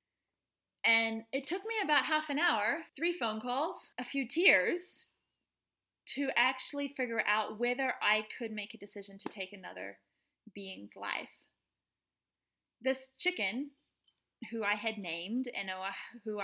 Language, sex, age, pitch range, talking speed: English, female, 20-39, 195-260 Hz, 135 wpm